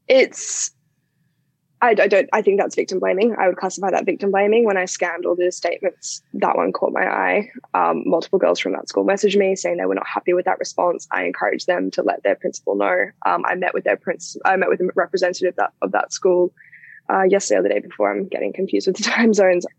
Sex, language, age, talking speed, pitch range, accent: female, English, 10-29, 230 wpm, 180-230 Hz, Australian